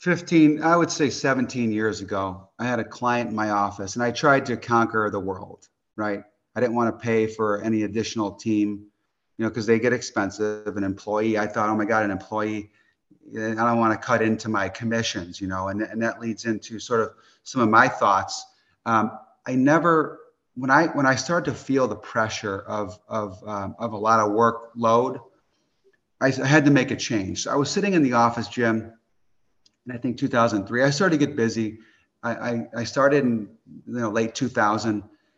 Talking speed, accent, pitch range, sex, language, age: 200 wpm, American, 105-120 Hz, male, English, 30-49